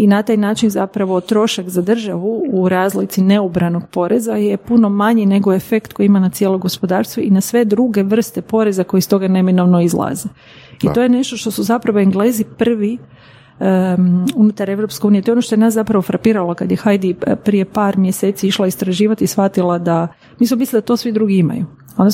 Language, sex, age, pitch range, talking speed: Croatian, female, 40-59, 190-220 Hz, 200 wpm